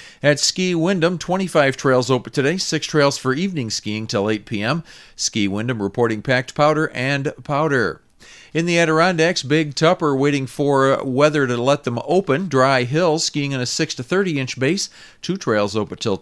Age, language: 50-69, English